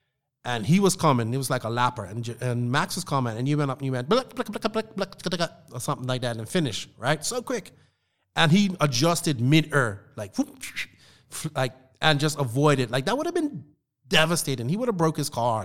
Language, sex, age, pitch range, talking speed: English, male, 30-49, 125-165 Hz, 195 wpm